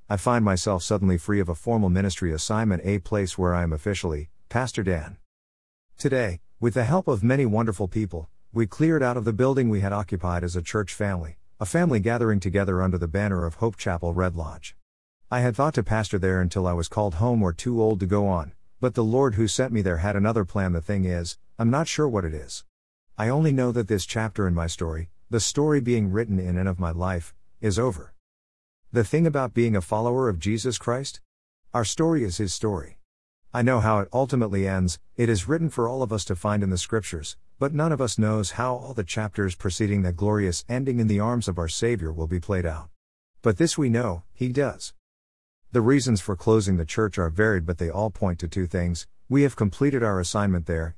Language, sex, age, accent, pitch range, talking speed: English, male, 50-69, American, 90-115 Hz, 220 wpm